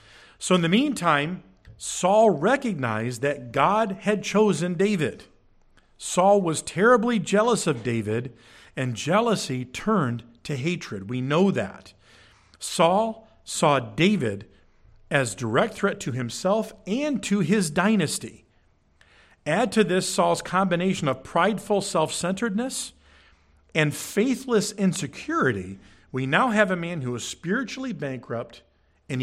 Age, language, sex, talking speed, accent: 50-69, English, male, 120 wpm, American